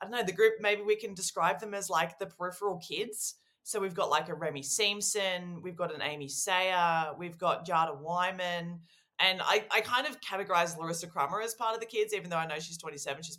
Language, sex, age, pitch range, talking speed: English, female, 20-39, 150-210 Hz, 230 wpm